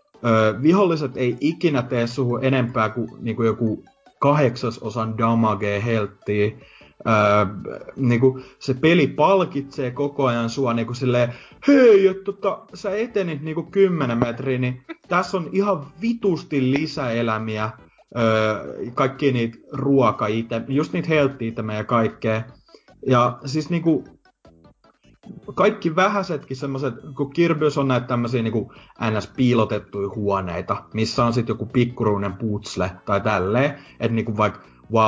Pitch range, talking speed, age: 110-145 Hz, 125 wpm, 30-49